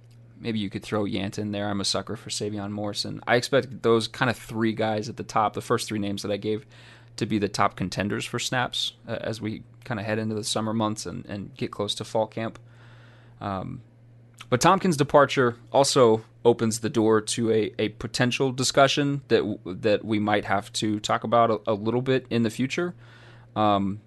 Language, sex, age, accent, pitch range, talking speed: English, male, 20-39, American, 110-120 Hz, 205 wpm